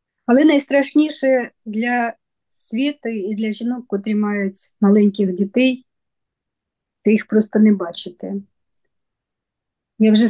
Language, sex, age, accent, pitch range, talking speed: Ukrainian, female, 20-39, native, 205-240 Hz, 105 wpm